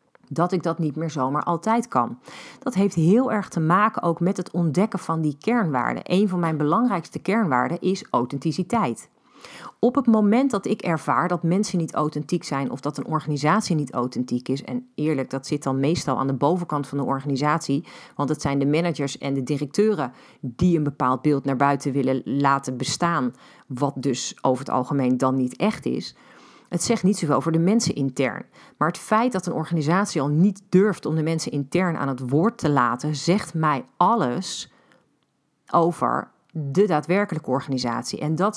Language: Dutch